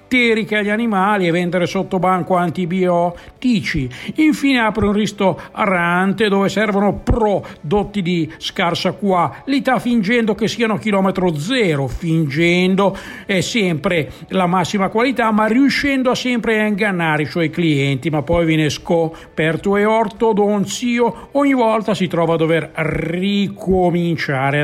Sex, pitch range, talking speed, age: male, 170-220 Hz, 125 wpm, 60-79